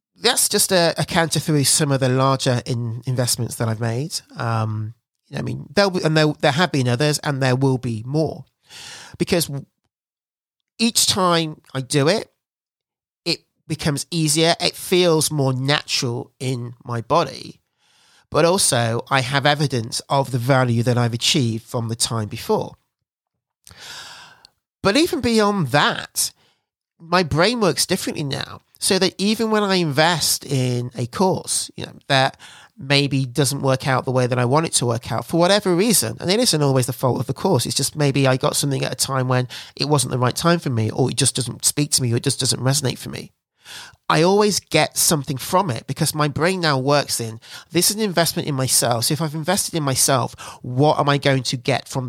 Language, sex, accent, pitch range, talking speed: English, male, British, 125-165 Hz, 195 wpm